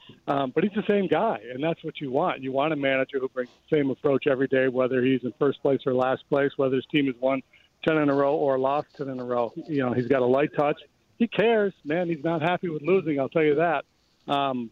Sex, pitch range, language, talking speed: male, 130-155 Hz, English, 265 wpm